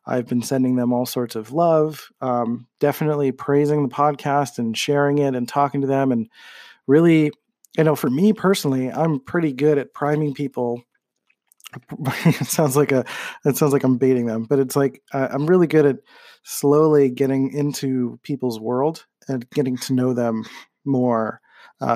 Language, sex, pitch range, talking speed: English, male, 125-150 Hz, 170 wpm